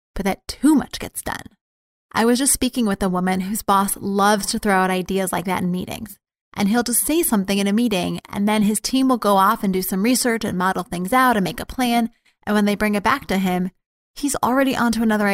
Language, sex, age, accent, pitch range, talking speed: English, female, 20-39, American, 195-235 Hz, 245 wpm